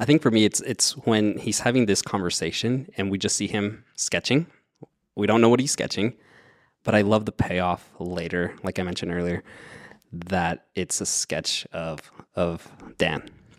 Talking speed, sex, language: 175 wpm, male, English